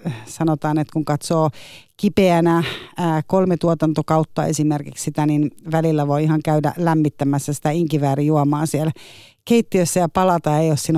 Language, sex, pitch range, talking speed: Finnish, female, 145-170 Hz, 140 wpm